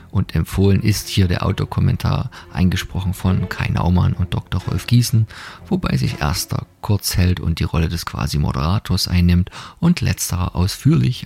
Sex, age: male, 40-59